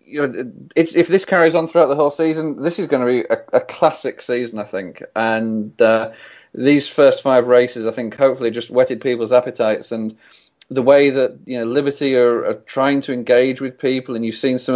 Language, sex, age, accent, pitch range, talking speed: English, male, 40-59, British, 120-135 Hz, 215 wpm